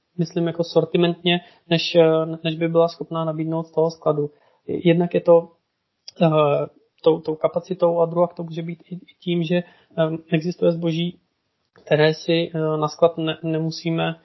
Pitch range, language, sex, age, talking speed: 155-170 Hz, Czech, male, 20-39, 155 wpm